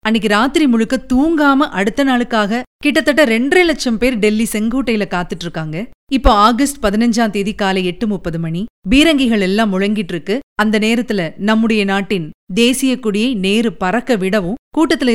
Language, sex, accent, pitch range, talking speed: Tamil, female, native, 195-260 Hz, 145 wpm